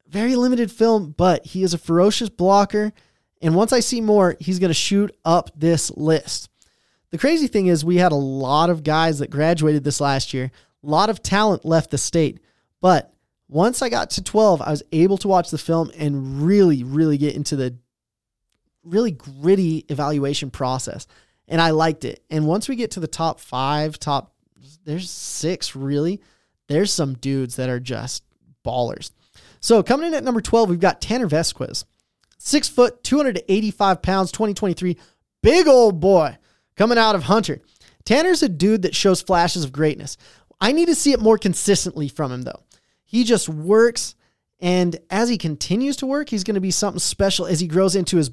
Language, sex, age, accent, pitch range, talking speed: English, male, 20-39, American, 155-210 Hz, 185 wpm